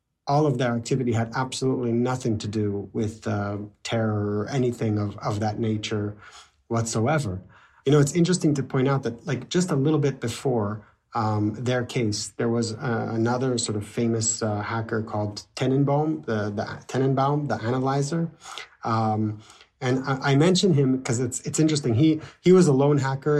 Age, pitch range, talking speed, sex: 30-49, 115-135 Hz, 175 wpm, male